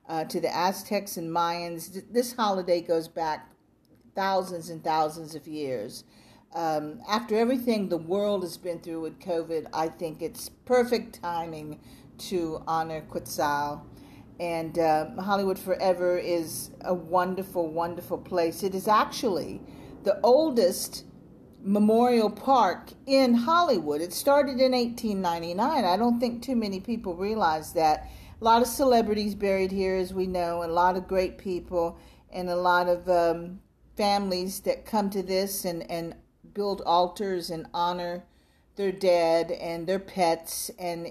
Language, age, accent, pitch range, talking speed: English, 50-69, American, 170-215 Hz, 145 wpm